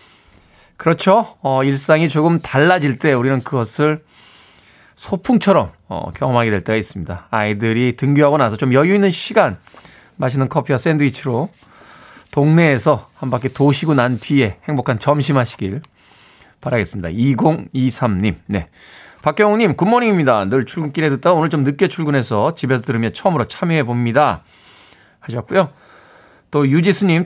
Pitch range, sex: 125-175 Hz, male